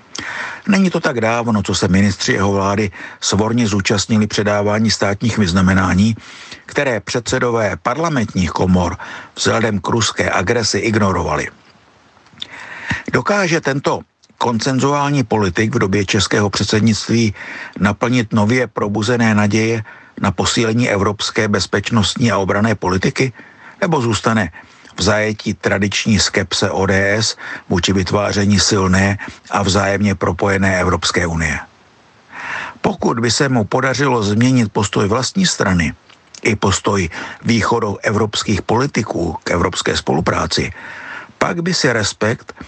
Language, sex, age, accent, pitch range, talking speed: Czech, male, 60-79, native, 100-120 Hz, 110 wpm